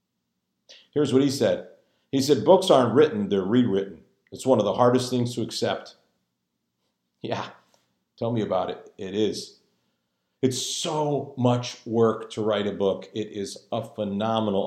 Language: English